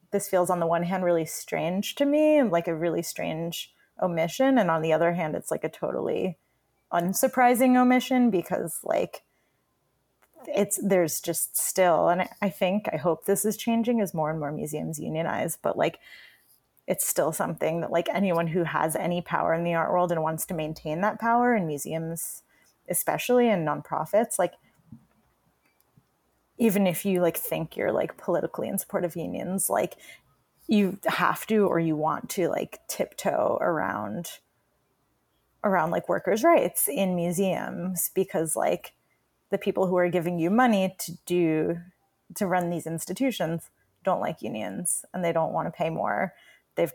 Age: 30-49